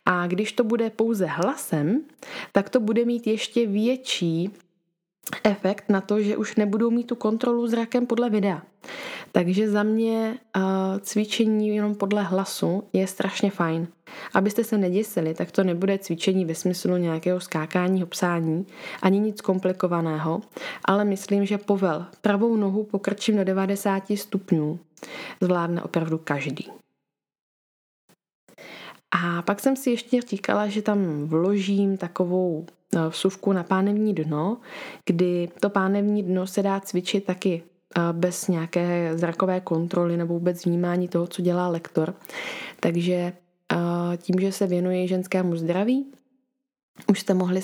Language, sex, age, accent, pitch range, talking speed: Czech, female, 20-39, native, 175-210 Hz, 135 wpm